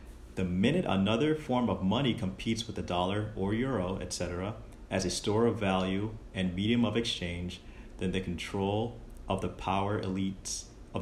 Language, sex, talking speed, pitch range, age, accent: English, male, 165 wpm, 90-110 Hz, 30-49, American